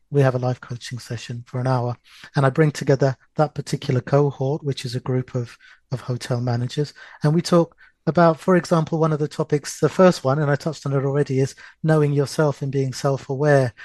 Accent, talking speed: British, 210 wpm